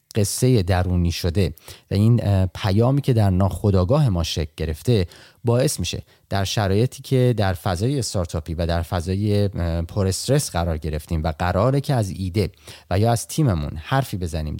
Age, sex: 30-49, male